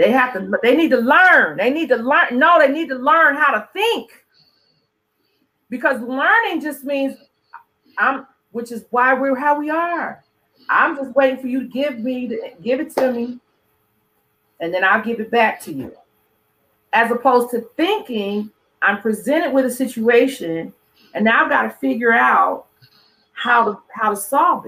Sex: female